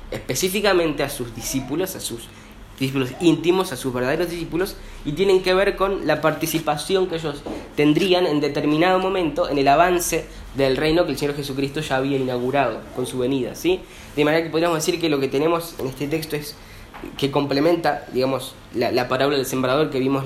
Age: 10-29